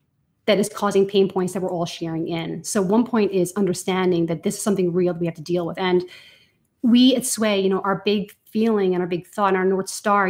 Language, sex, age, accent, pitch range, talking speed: English, female, 30-49, American, 185-215 Hz, 250 wpm